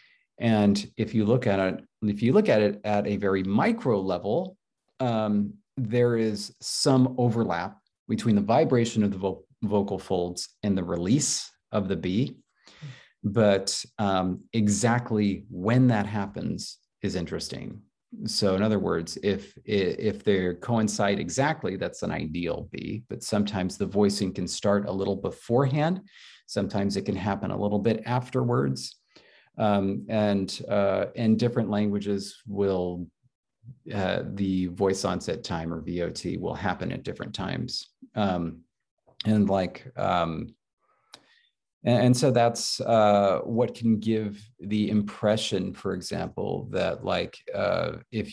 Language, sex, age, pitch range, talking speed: English, male, 40-59, 95-115 Hz, 140 wpm